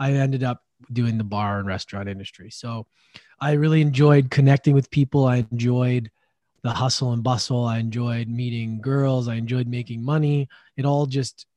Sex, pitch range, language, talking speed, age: male, 115-140 Hz, English, 170 wpm, 20-39